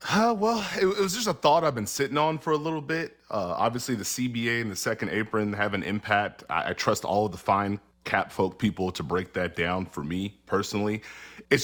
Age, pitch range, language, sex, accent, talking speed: 30-49, 95-120 Hz, English, male, American, 230 wpm